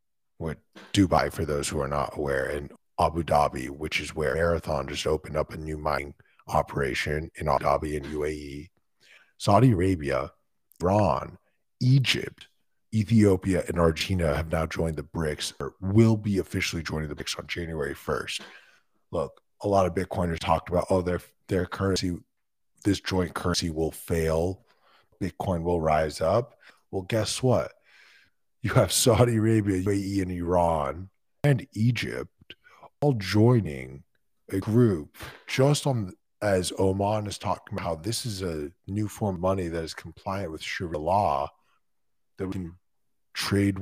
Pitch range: 80-105 Hz